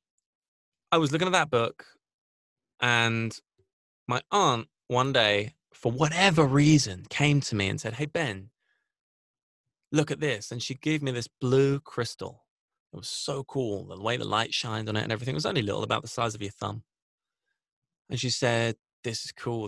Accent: British